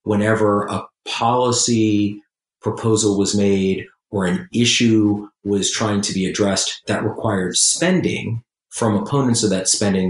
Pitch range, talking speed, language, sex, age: 100-115 Hz, 130 wpm, English, male, 40-59